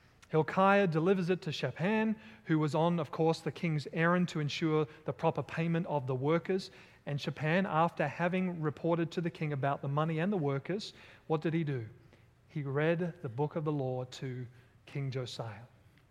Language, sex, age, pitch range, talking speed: English, male, 30-49, 130-160 Hz, 185 wpm